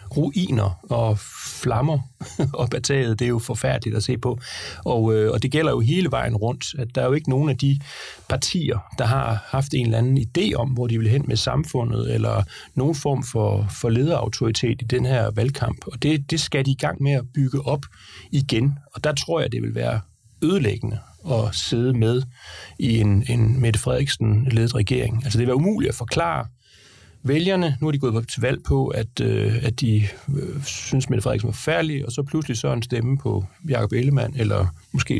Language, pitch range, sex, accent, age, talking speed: Danish, 115-140 Hz, male, native, 30-49, 205 wpm